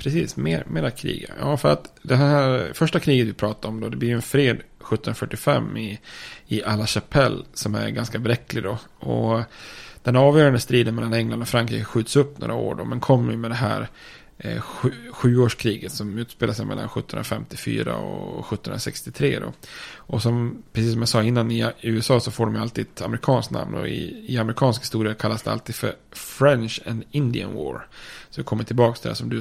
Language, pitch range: Swedish, 110-130 Hz